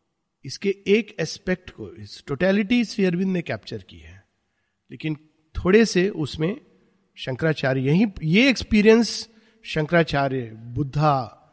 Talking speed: 105 wpm